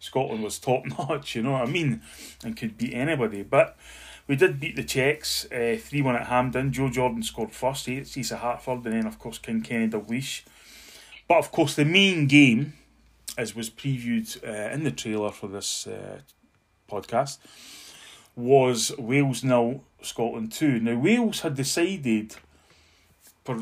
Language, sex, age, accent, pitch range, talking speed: English, male, 20-39, British, 115-140 Hz, 160 wpm